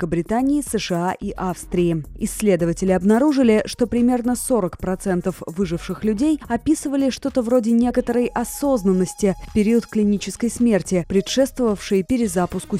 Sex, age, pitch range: female, 20-39, 190-245 Hz